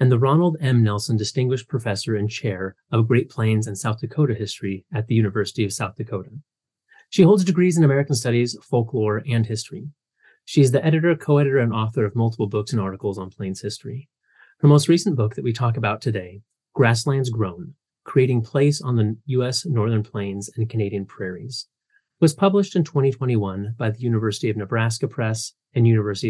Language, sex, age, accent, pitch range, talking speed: English, male, 30-49, American, 110-145 Hz, 180 wpm